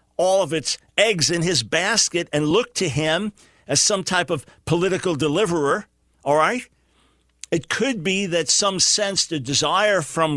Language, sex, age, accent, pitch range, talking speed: English, male, 50-69, American, 155-195 Hz, 160 wpm